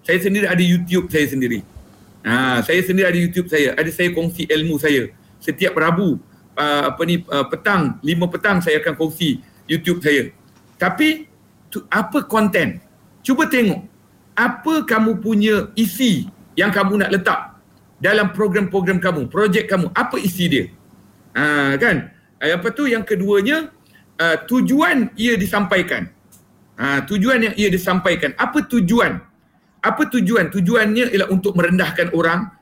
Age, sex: 50-69, male